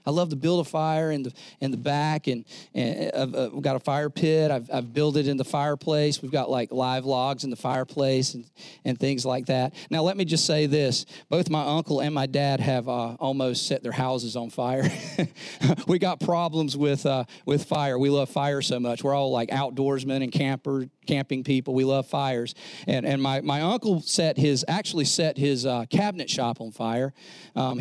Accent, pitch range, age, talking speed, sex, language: American, 130-155 Hz, 40-59, 215 wpm, male, English